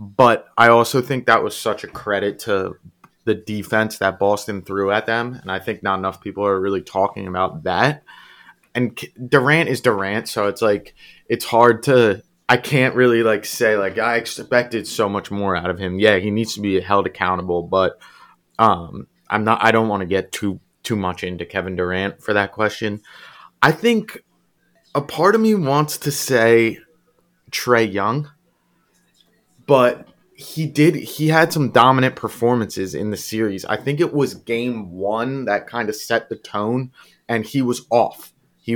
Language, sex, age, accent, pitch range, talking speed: English, male, 20-39, American, 100-125 Hz, 180 wpm